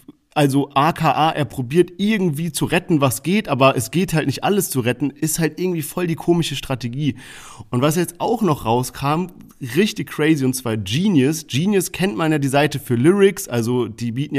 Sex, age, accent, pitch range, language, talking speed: male, 40-59, German, 130-170 Hz, German, 190 wpm